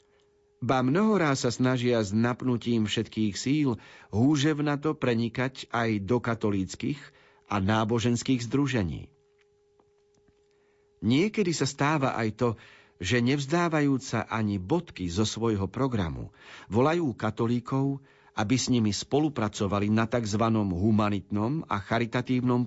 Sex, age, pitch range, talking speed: male, 50-69, 105-140 Hz, 110 wpm